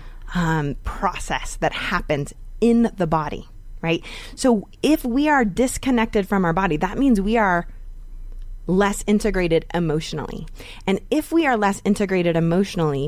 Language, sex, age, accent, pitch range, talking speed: English, female, 20-39, American, 160-215 Hz, 140 wpm